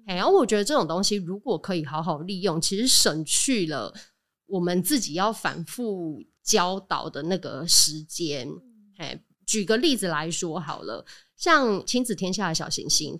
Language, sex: Chinese, female